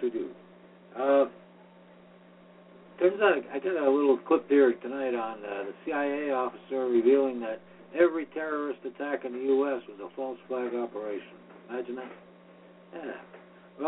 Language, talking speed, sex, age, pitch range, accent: English, 145 wpm, male, 60-79, 120-165 Hz, American